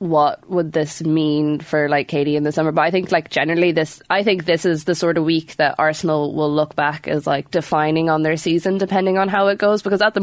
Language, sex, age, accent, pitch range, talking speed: English, female, 20-39, Irish, 155-175 Hz, 250 wpm